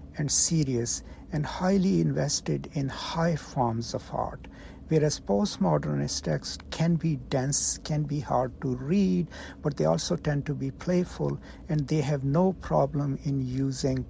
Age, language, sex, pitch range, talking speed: 60-79, English, male, 115-155 Hz, 150 wpm